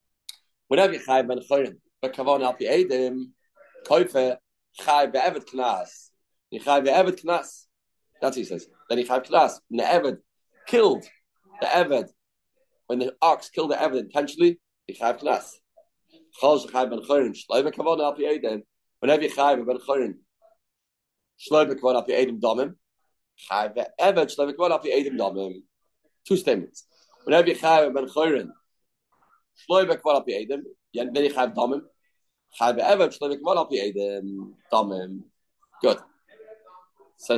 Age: 50-69